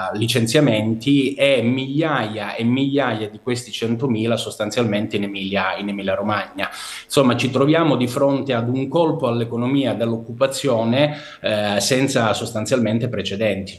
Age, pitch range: 30-49, 115-140 Hz